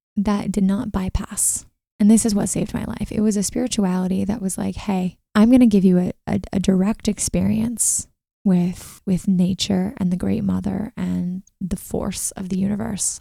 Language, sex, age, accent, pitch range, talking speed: English, female, 20-39, American, 185-210 Hz, 185 wpm